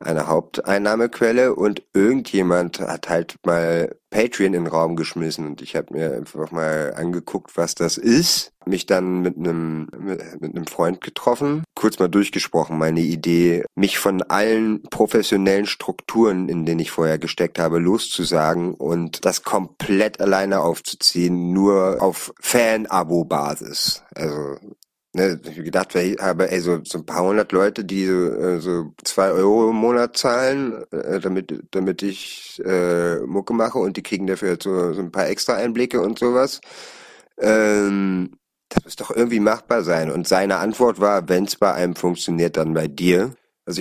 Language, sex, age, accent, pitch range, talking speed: German, male, 30-49, German, 85-100 Hz, 160 wpm